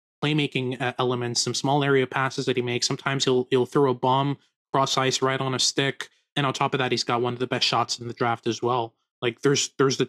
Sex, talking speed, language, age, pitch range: male, 250 wpm, English, 20-39, 125-140 Hz